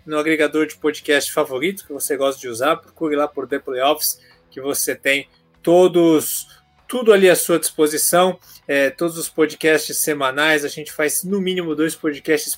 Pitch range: 150-190 Hz